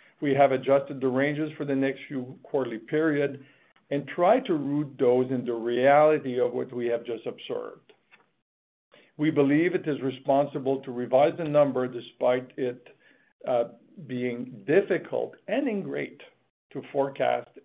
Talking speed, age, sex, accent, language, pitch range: 145 wpm, 50-69, male, American, English, 125-150 Hz